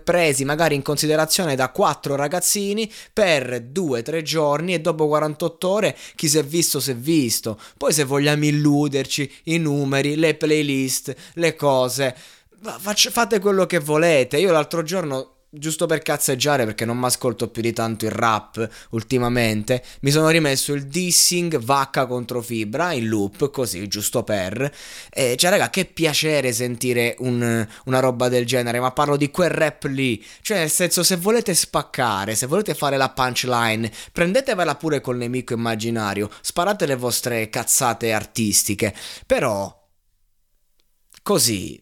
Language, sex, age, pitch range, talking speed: Italian, male, 20-39, 120-160 Hz, 150 wpm